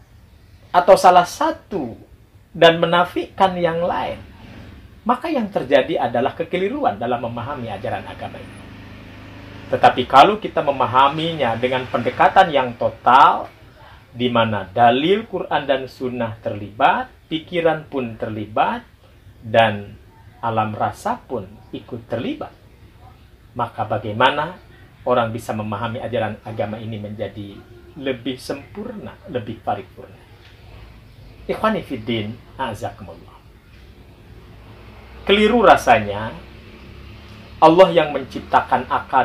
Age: 40-59